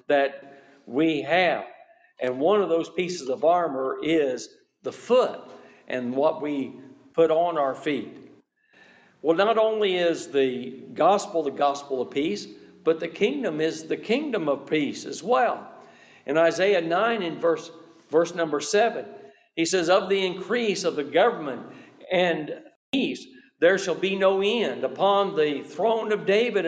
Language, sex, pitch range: English, male, 160-215 Hz